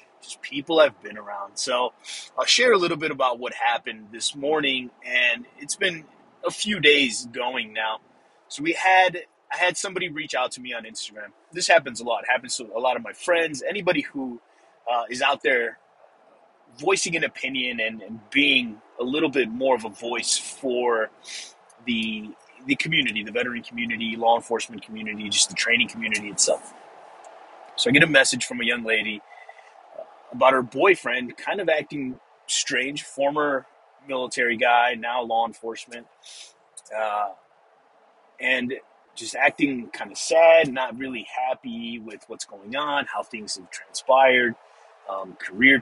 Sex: male